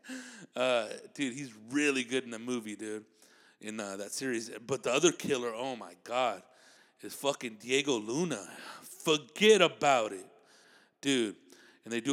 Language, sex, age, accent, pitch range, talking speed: English, male, 30-49, American, 105-130 Hz, 155 wpm